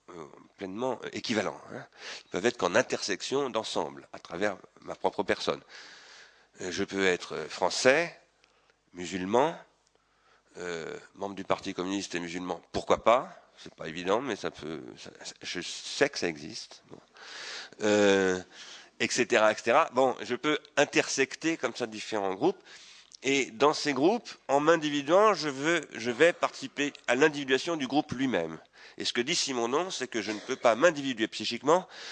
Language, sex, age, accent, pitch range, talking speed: French, male, 40-59, French, 105-155 Hz, 150 wpm